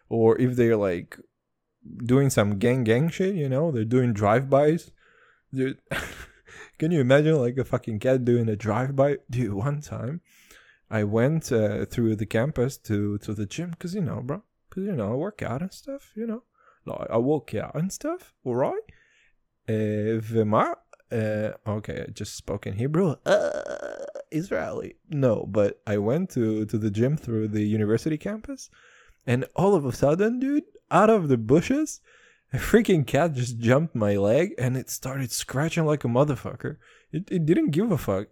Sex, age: male, 20-39